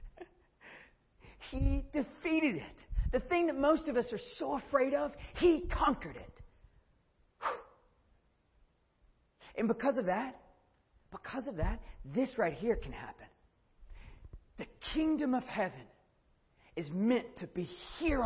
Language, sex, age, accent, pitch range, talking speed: English, male, 50-69, American, 180-295 Hz, 120 wpm